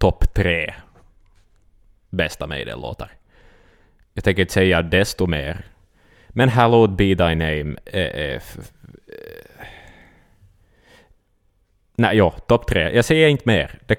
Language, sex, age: Swedish, male, 20-39